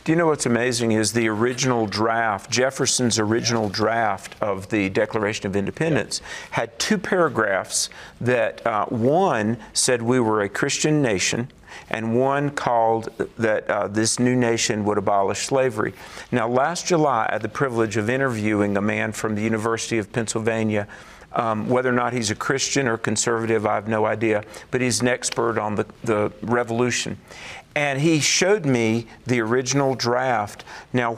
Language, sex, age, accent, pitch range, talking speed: English, male, 50-69, American, 110-130 Hz, 165 wpm